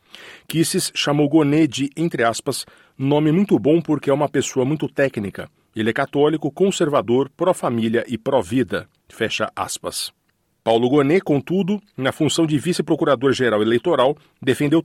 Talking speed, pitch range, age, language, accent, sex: 135 wpm, 115-155 Hz, 40-59, Portuguese, Brazilian, male